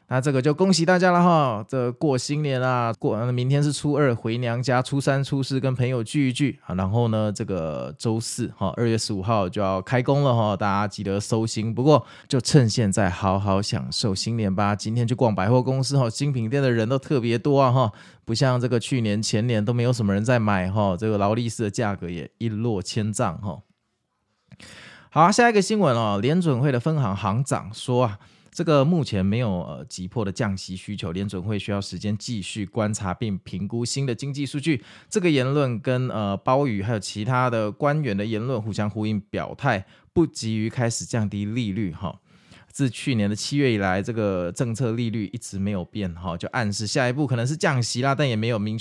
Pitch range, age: 100-130 Hz, 20-39